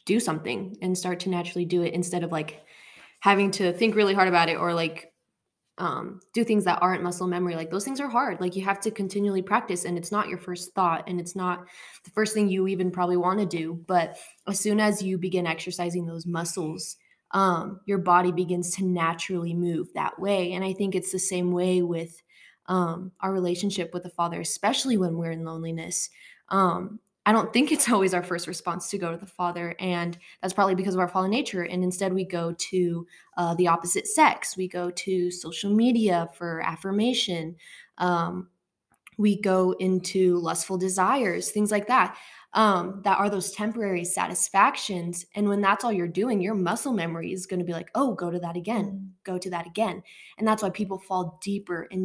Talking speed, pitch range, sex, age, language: 205 wpm, 175-200 Hz, female, 20-39, English